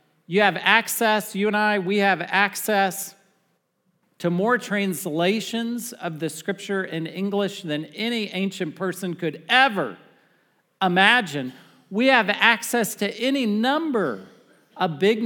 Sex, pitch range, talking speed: male, 160-210 Hz, 125 wpm